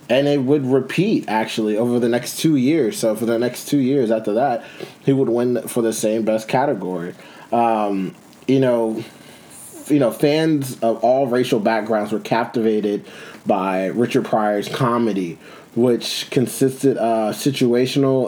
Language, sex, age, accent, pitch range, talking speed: English, male, 20-39, American, 105-130 Hz, 150 wpm